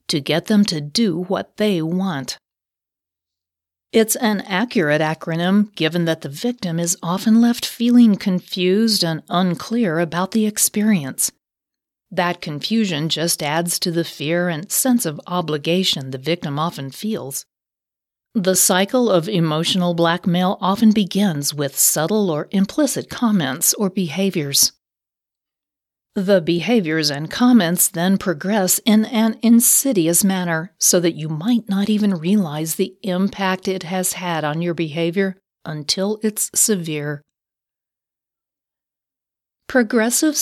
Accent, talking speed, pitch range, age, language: American, 125 wpm, 160-210 Hz, 40-59, English